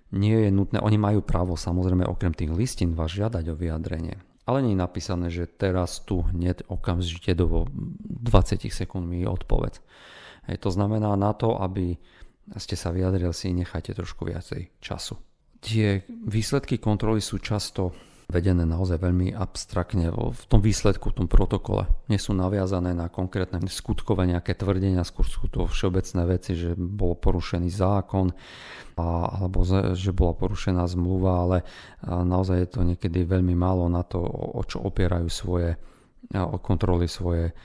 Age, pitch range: 40-59, 90-100 Hz